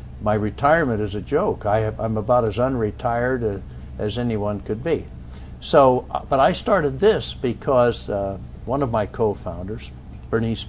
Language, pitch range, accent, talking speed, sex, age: English, 80-120 Hz, American, 155 wpm, male, 60-79